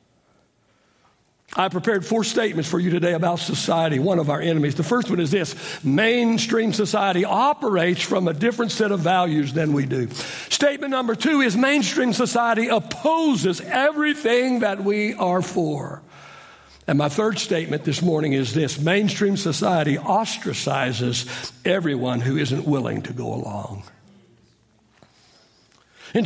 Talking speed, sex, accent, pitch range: 140 wpm, male, American, 165-250 Hz